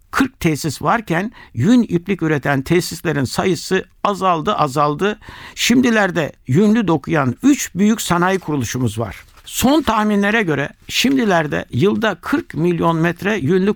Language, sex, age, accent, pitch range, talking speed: Turkish, male, 60-79, native, 140-205 Hz, 120 wpm